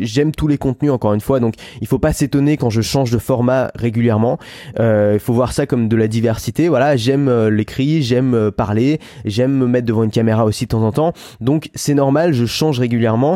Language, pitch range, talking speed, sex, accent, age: French, 120-145 Hz, 215 wpm, male, French, 20-39